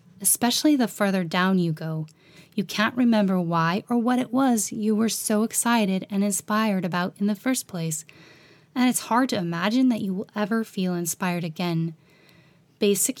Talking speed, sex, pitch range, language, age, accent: 175 wpm, female, 175-220 Hz, English, 10-29, American